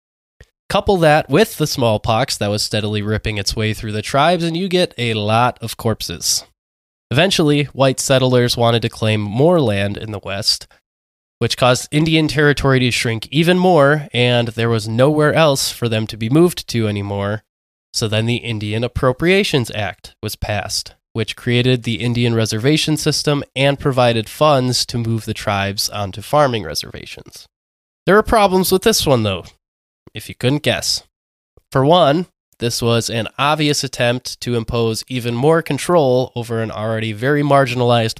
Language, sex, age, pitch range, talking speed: English, male, 20-39, 110-140 Hz, 165 wpm